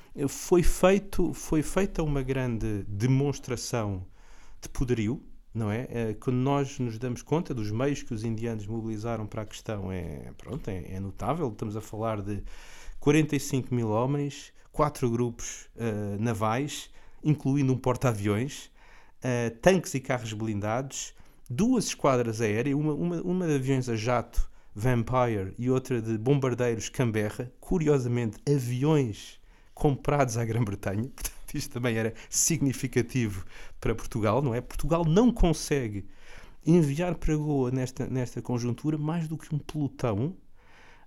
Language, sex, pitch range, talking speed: Portuguese, male, 115-150 Hz, 135 wpm